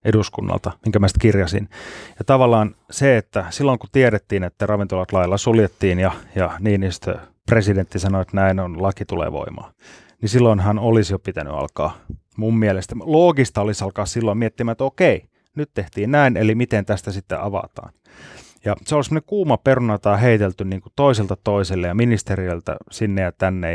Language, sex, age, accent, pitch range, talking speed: Finnish, male, 30-49, native, 95-125 Hz, 170 wpm